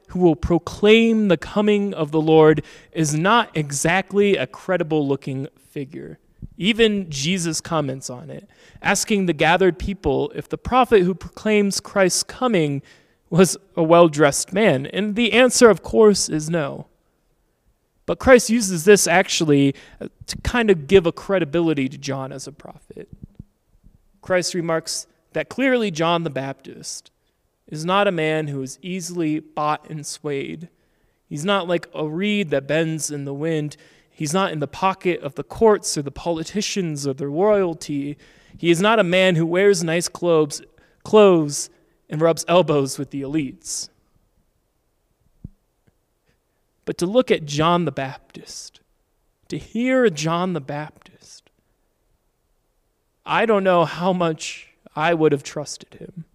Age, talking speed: 30-49, 145 wpm